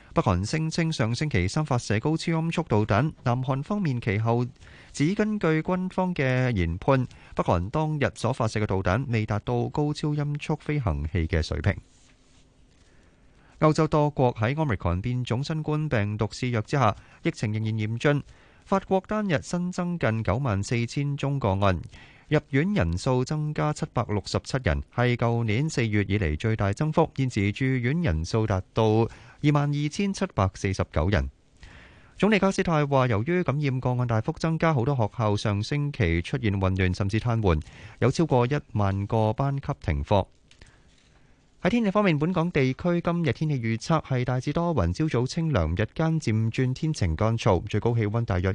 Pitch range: 105-150 Hz